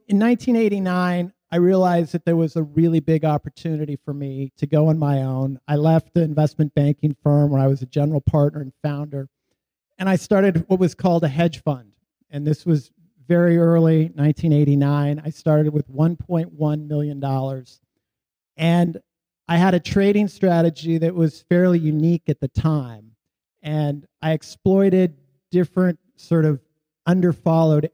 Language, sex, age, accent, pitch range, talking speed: English, male, 50-69, American, 145-175 Hz, 155 wpm